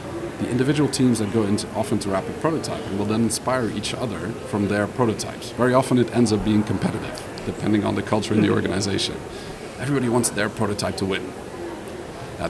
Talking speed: 185 wpm